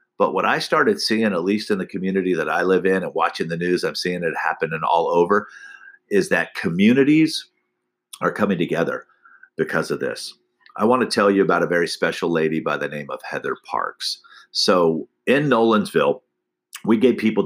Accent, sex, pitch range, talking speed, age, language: American, male, 85-120 Hz, 190 wpm, 50-69, English